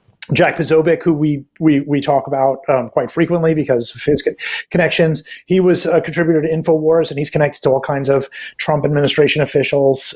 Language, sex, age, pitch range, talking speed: English, male, 30-49, 135-165 Hz, 190 wpm